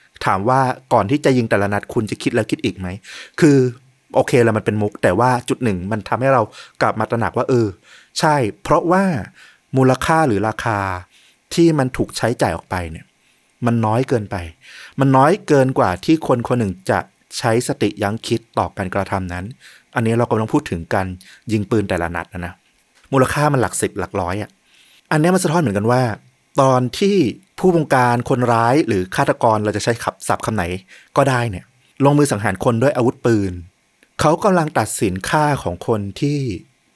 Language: Thai